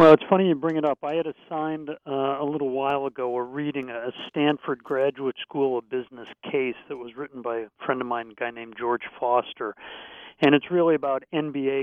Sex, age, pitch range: male, 50-69, 130-155 Hz